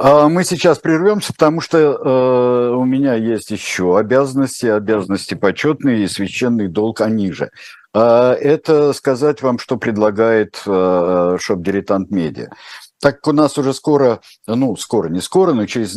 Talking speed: 140 wpm